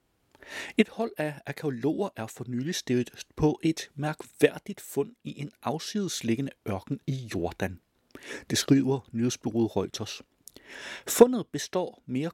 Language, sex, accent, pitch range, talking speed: Danish, male, native, 120-185 Hz, 120 wpm